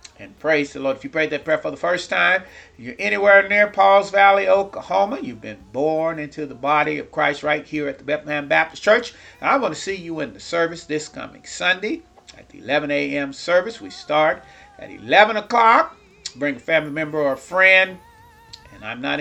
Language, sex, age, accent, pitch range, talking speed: English, male, 40-59, American, 150-195 Hz, 205 wpm